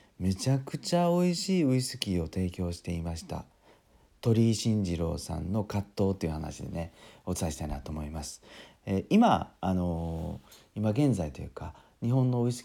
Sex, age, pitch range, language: male, 40-59, 85-115 Hz, Japanese